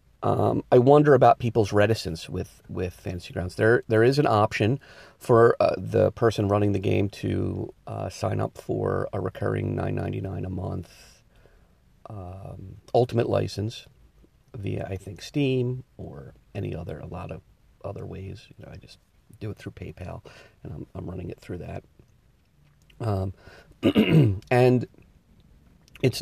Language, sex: English, male